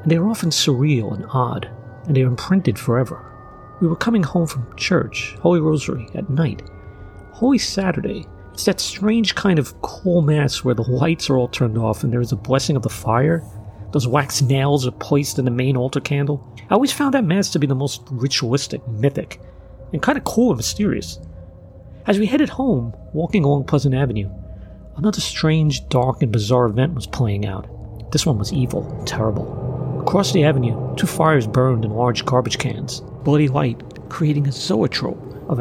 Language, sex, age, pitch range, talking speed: English, male, 40-59, 110-145 Hz, 185 wpm